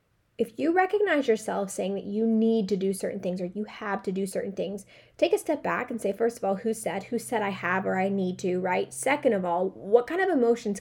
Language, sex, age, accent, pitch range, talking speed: English, female, 20-39, American, 185-225 Hz, 255 wpm